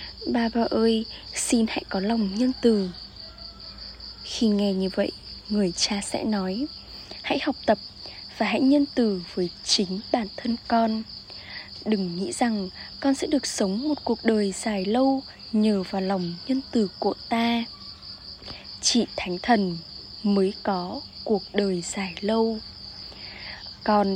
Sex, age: female, 10-29